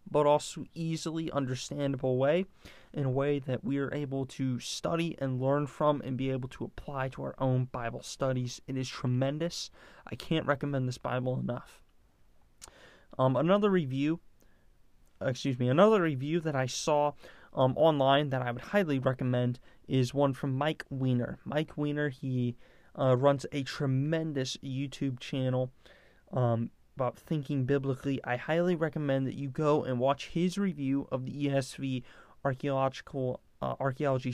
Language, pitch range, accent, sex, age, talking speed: English, 130-150 Hz, American, male, 20-39, 150 wpm